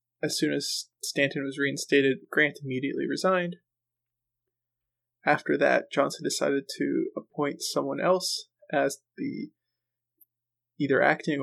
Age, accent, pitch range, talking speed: 20-39, American, 120-165 Hz, 110 wpm